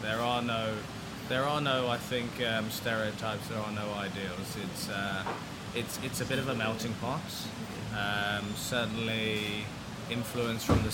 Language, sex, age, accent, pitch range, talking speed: English, male, 20-39, British, 115-135 Hz, 160 wpm